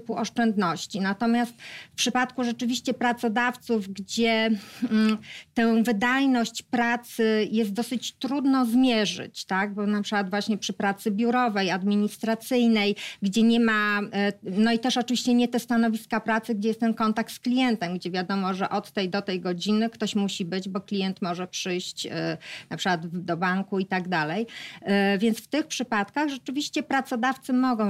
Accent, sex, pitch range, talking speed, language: native, female, 210-245 Hz, 155 wpm, Polish